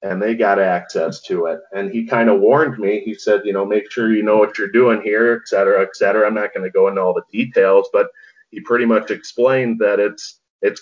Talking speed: 250 wpm